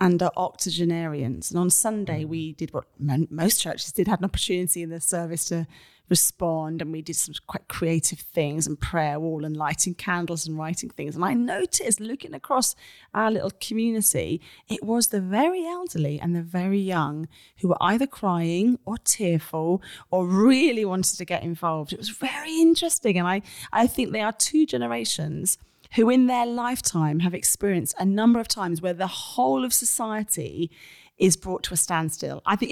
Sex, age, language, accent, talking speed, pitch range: female, 30-49, English, British, 180 wpm, 165-215 Hz